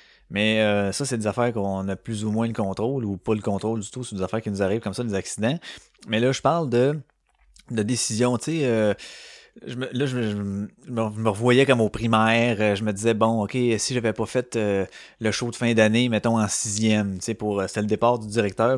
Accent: Canadian